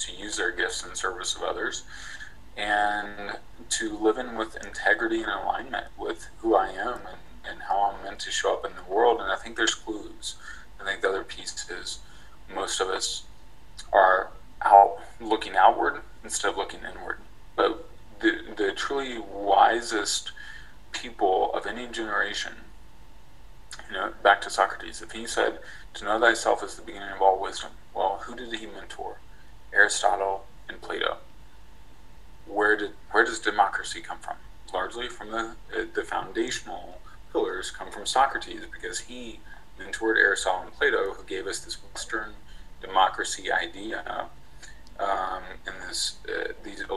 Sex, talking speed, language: male, 155 wpm, English